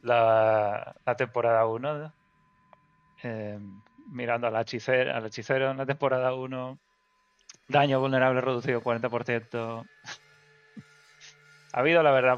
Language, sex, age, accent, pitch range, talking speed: Spanish, male, 20-39, Spanish, 115-140 Hz, 105 wpm